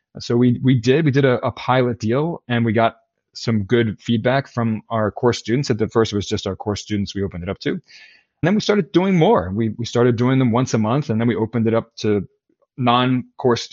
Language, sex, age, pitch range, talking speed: English, male, 20-39, 105-125 Hz, 245 wpm